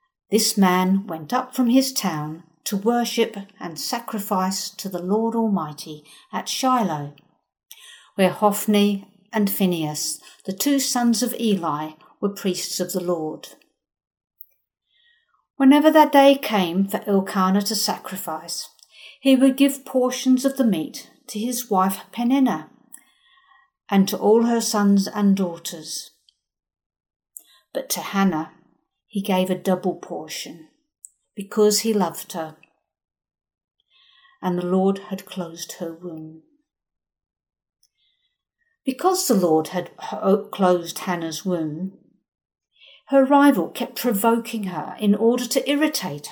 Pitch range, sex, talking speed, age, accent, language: 185-255 Hz, female, 120 wpm, 50-69, British, English